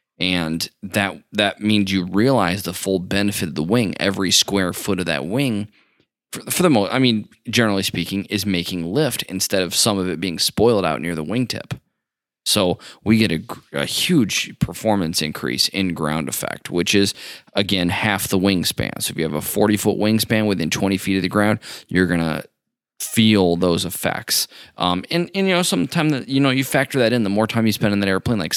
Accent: American